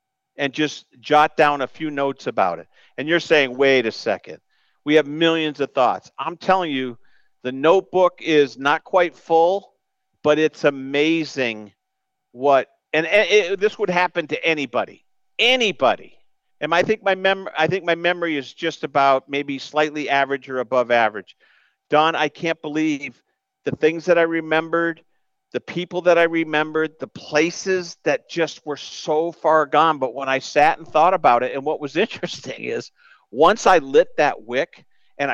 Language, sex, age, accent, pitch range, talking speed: English, male, 50-69, American, 140-185 Hz, 170 wpm